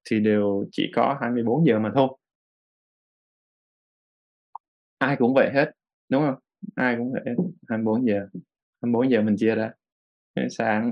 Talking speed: 135 wpm